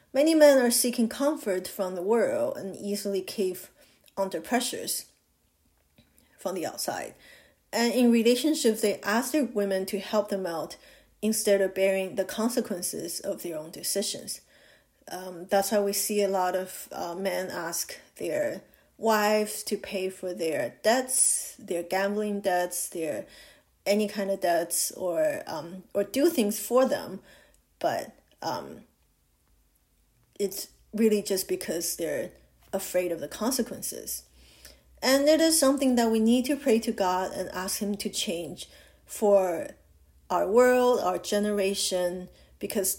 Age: 30-49